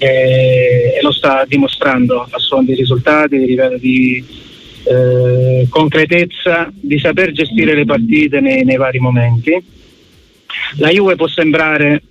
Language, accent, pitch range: Italian, native, 130-160 Hz